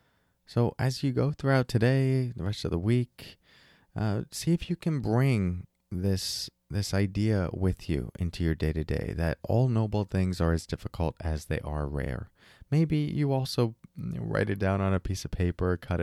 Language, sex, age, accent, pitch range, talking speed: English, male, 30-49, American, 80-115 Hz, 180 wpm